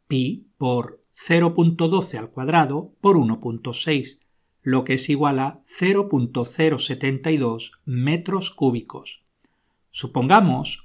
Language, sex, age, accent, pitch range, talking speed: Spanish, male, 50-69, Spanish, 130-165 Hz, 90 wpm